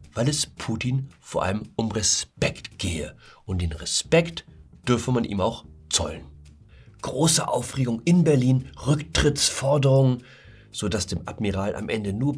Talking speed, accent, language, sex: 130 wpm, German, German, male